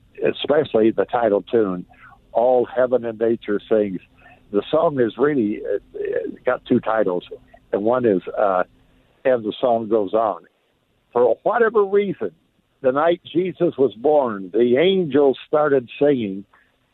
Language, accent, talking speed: English, American, 135 wpm